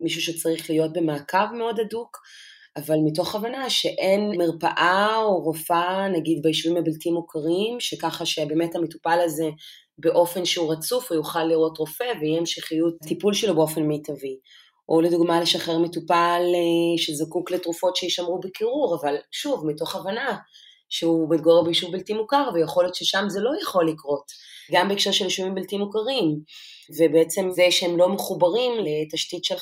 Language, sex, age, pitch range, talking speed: Hebrew, female, 30-49, 155-180 Hz, 145 wpm